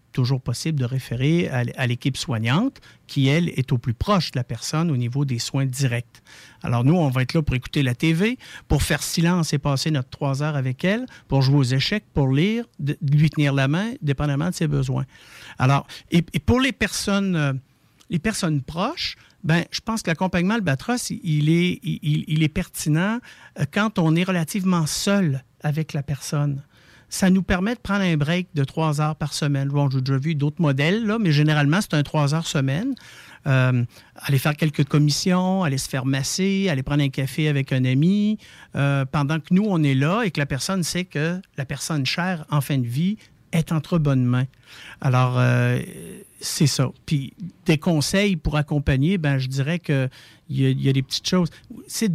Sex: male